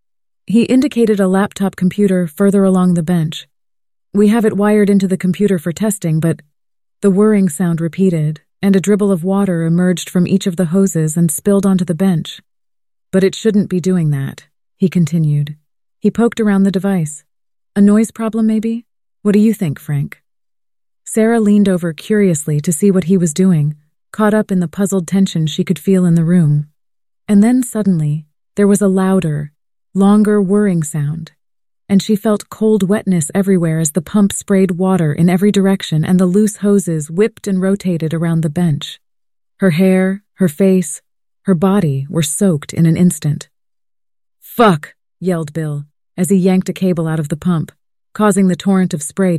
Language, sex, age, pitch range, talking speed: English, female, 30-49, 165-200 Hz, 175 wpm